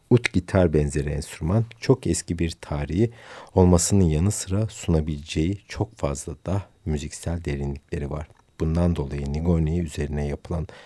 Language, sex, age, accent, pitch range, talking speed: Turkish, male, 50-69, native, 75-95 Hz, 125 wpm